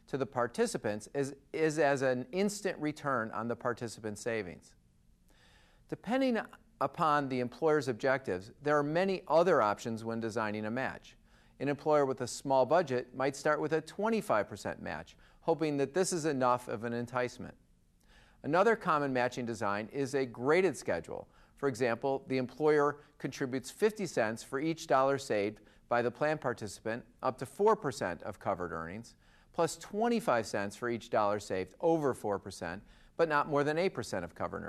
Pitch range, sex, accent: 115-150 Hz, male, American